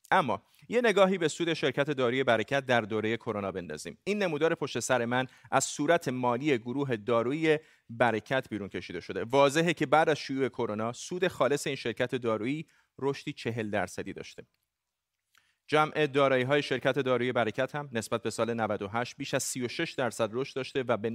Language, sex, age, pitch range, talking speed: Persian, male, 30-49, 115-145 Hz, 165 wpm